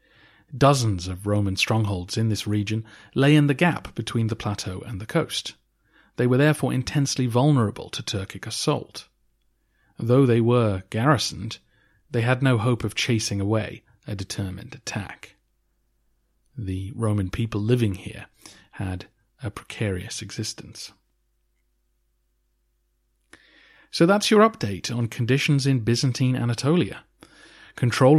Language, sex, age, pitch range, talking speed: English, male, 40-59, 100-125 Hz, 125 wpm